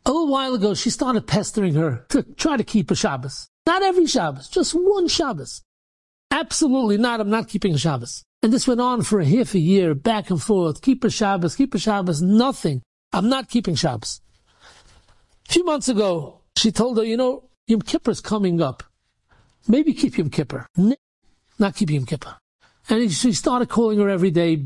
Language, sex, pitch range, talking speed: English, male, 170-255 Hz, 190 wpm